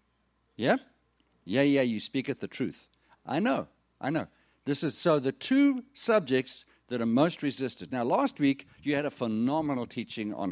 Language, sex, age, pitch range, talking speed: English, male, 50-69, 120-175 Hz, 170 wpm